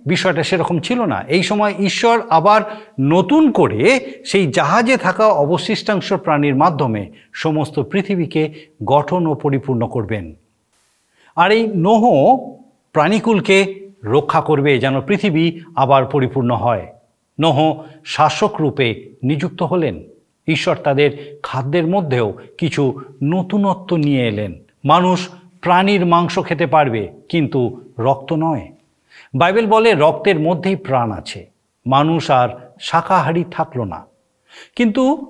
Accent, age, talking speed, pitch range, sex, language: native, 50-69, 110 wpm, 135-195 Hz, male, Bengali